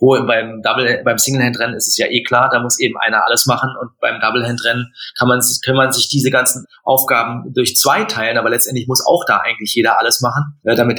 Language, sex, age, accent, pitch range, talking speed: German, male, 30-49, German, 120-145 Hz, 220 wpm